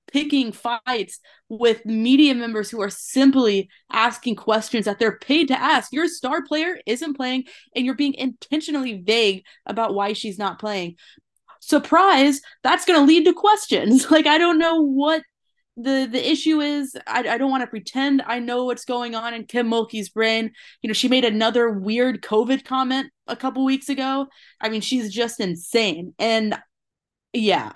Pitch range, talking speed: 220-290 Hz, 175 wpm